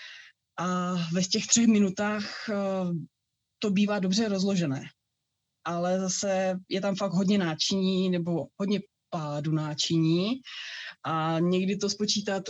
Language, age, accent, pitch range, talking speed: Czech, 20-39, native, 165-200 Hz, 115 wpm